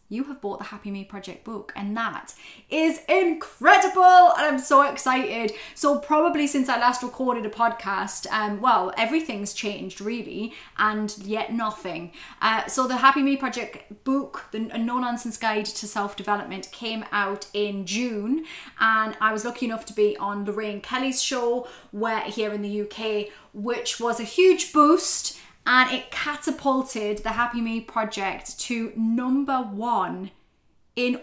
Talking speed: 155 wpm